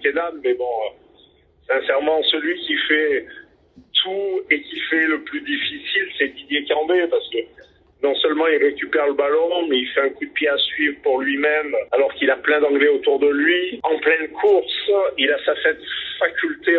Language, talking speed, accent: French, 180 wpm, French